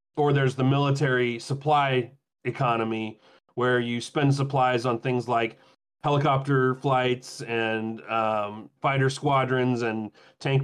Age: 30-49